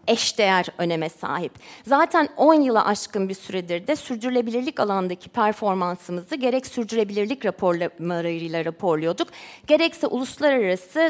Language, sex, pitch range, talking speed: Turkish, female, 205-280 Hz, 110 wpm